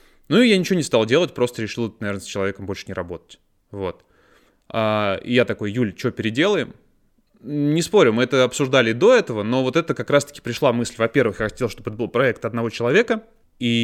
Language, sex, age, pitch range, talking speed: Russian, male, 20-39, 110-140 Hz, 205 wpm